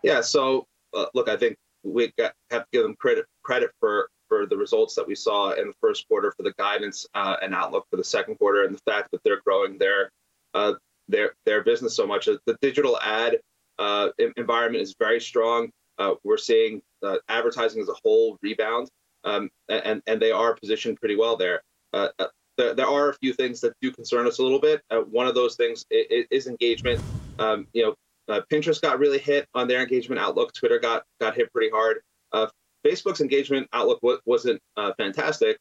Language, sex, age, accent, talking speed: English, male, 30-49, American, 205 wpm